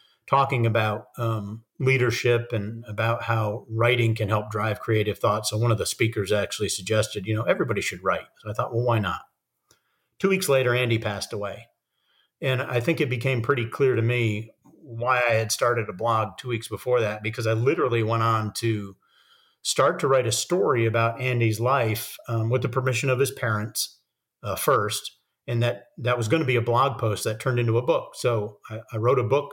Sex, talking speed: male, 205 wpm